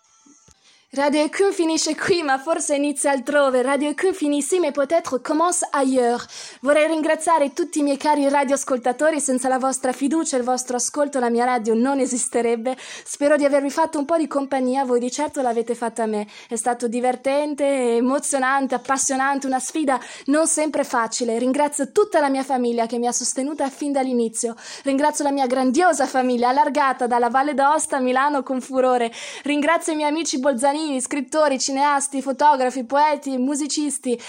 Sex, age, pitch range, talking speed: female, 20-39, 255-300 Hz, 165 wpm